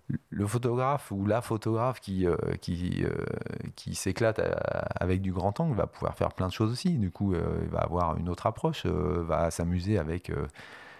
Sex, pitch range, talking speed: male, 85-105 Hz, 170 wpm